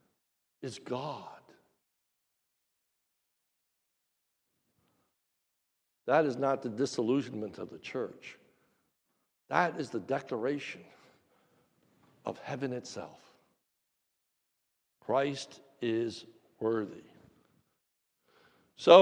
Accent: American